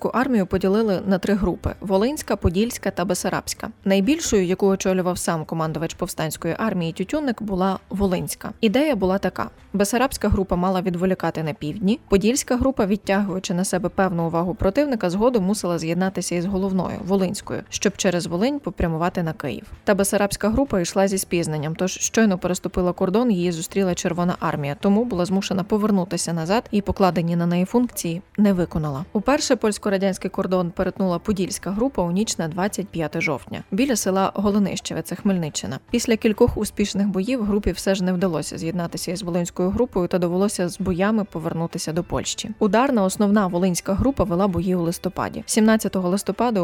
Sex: female